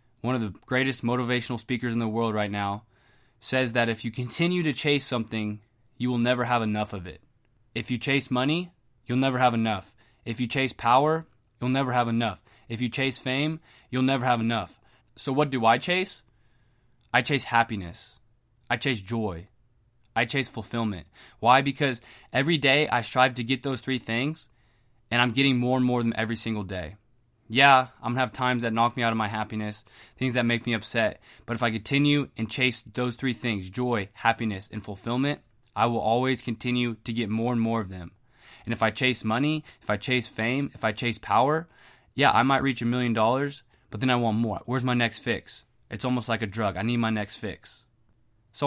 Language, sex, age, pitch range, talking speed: English, male, 20-39, 110-125 Hz, 205 wpm